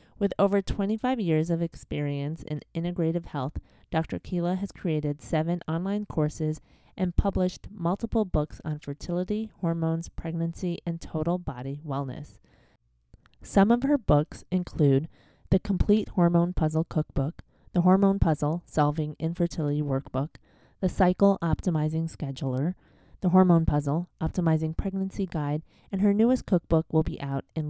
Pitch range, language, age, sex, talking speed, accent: 150-185 Hz, English, 30-49, female, 135 wpm, American